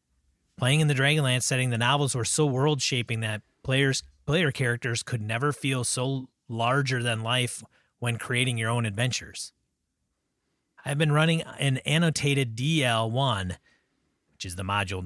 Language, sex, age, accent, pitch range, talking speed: English, male, 30-49, American, 115-145 Hz, 145 wpm